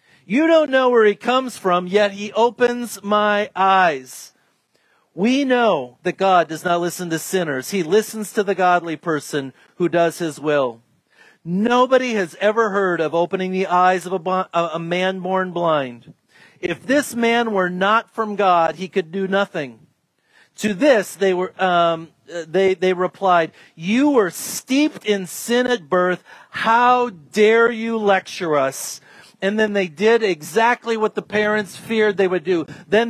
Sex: male